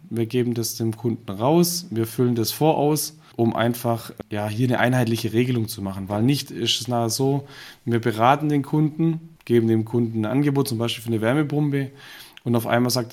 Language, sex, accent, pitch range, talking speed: German, male, German, 115-135 Hz, 195 wpm